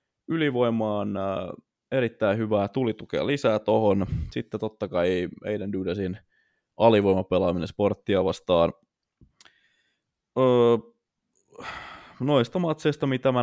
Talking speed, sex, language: 80 wpm, male, Finnish